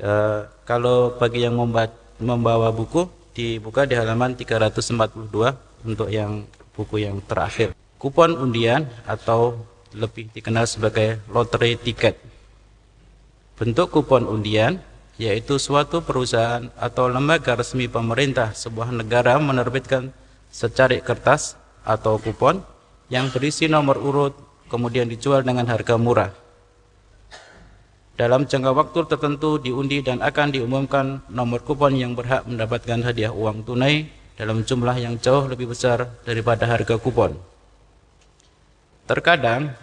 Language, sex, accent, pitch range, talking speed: Indonesian, male, native, 115-130 Hz, 115 wpm